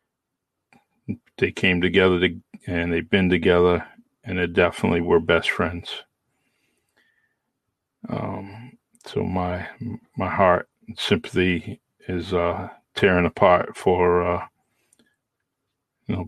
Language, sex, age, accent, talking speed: English, male, 40-59, American, 105 wpm